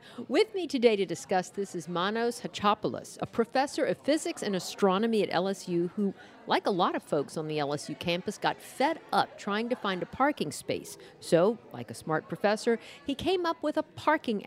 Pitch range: 170-240 Hz